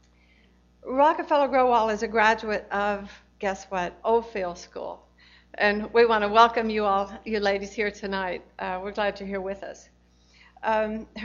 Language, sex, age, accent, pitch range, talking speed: English, female, 60-79, American, 200-240 Hz, 150 wpm